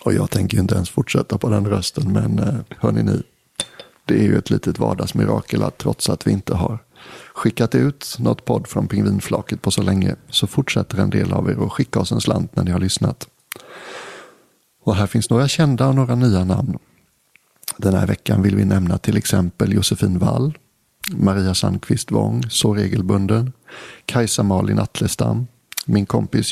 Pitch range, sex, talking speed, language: 100-120 Hz, male, 170 wpm, English